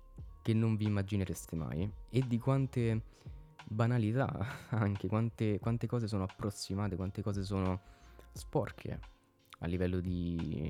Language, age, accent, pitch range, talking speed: Italian, 20-39, native, 85-110 Hz, 125 wpm